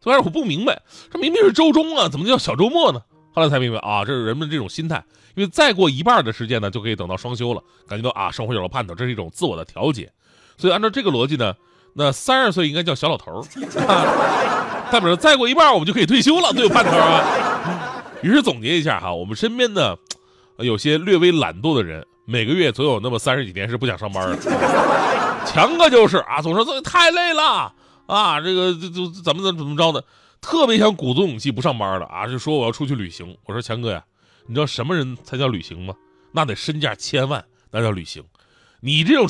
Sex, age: male, 30-49